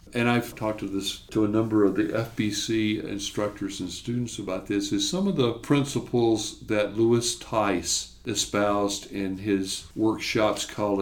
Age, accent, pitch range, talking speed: 60-79, American, 105-145 Hz, 160 wpm